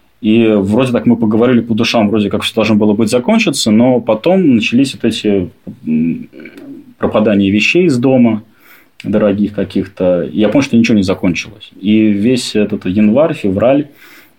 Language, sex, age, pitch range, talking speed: Russian, male, 20-39, 95-110 Hz, 150 wpm